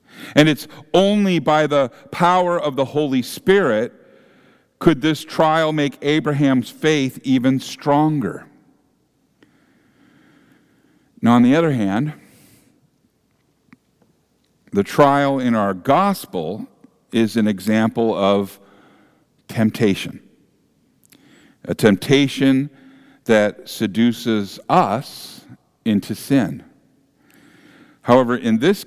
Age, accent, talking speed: 50-69, American, 90 wpm